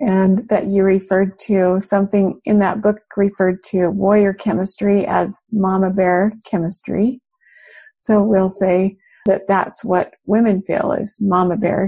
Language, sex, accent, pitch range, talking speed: English, female, American, 195-220 Hz, 140 wpm